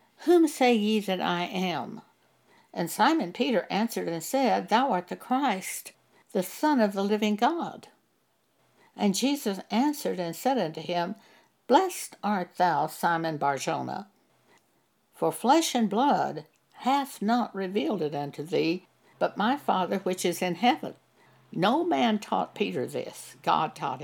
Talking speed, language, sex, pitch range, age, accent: 145 wpm, English, female, 180-255 Hz, 60-79, American